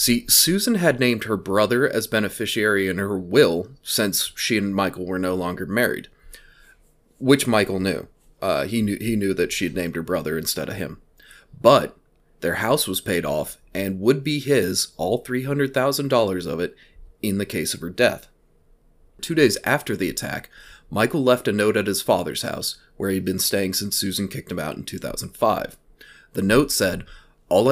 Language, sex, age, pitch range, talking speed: English, male, 30-49, 95-130 Hz, 180 wpm